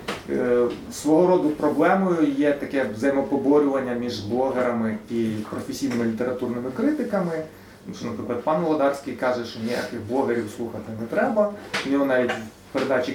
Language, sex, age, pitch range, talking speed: Ukrainian, male, 30-49, 120-150 Hz, 125 wpm